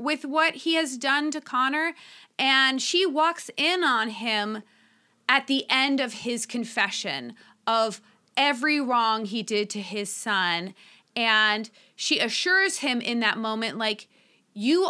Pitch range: 210-260 Hz